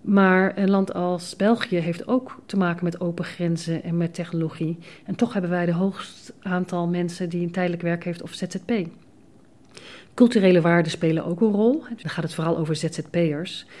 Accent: Dutch